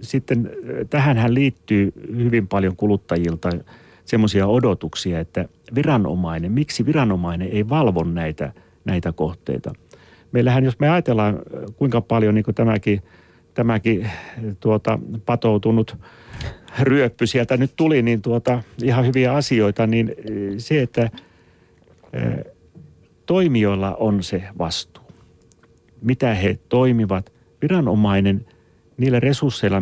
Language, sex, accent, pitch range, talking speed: Finnish, male, native, 90-120 Hz, 105 wpm